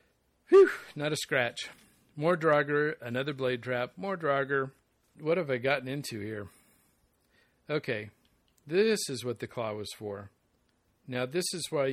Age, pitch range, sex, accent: 50-69, 120-150 Hz, male, American